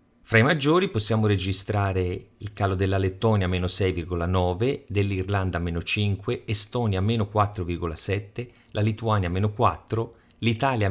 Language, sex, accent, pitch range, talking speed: Italian, male, native, 95-120 Hz, 120 wpm